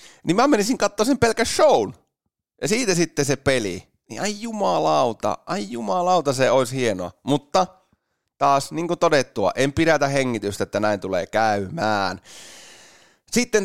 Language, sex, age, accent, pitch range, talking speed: Finnish, male, 30-49, native, 110-155 Hz, 140 wpm